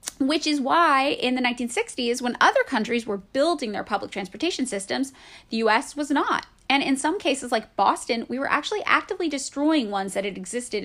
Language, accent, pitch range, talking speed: English, American, 220-305 Hz, 190 wpm